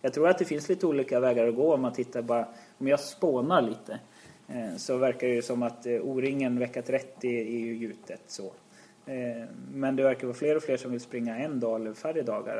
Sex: male